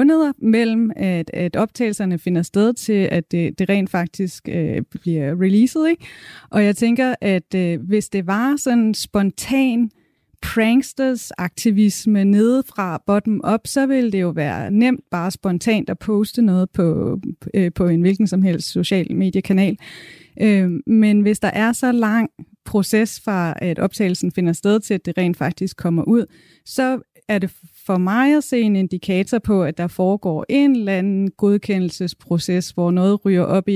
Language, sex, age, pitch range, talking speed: Danish, female, 30-49, 175-220 Hz, 165 wpm